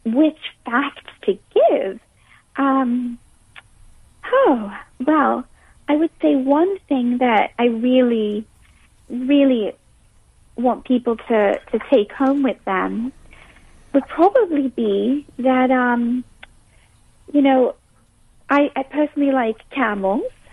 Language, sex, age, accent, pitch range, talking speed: English, female, 40-59, American, 230-275 Hz, 105 wpm